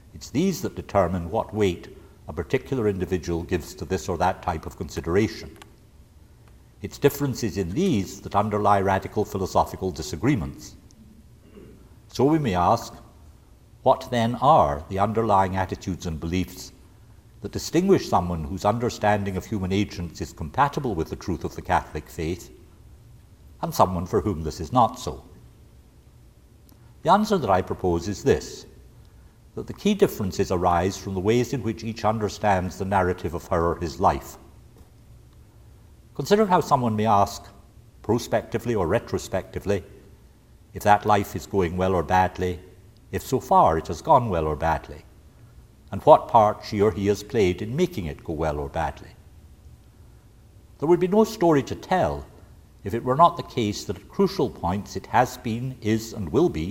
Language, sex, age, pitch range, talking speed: English, male, 60-79, 90-110 Hz, 160 wpm